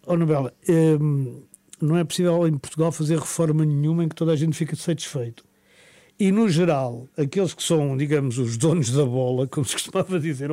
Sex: male